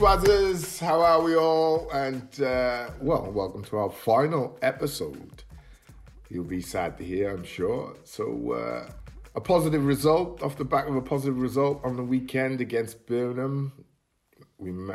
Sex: male